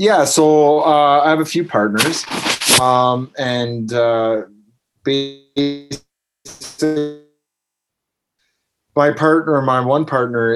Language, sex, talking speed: English, male, 90 wpm